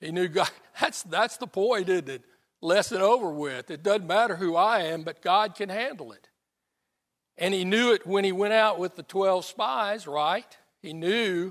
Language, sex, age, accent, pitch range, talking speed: English, male, 60-79, American, 140-190 Hz, 205 wpm